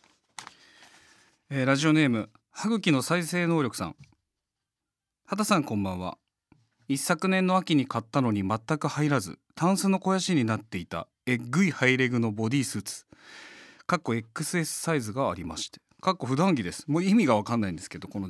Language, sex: Japanese, male